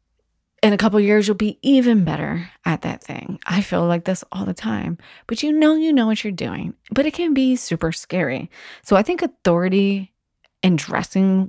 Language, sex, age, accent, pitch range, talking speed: English, female, 20-39, American, 160-210 Hz, 205 wpm